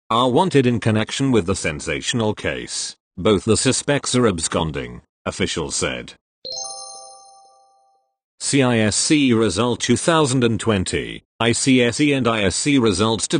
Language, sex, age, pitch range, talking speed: English, male, 40-59, 100-130 Hz, 105 wpm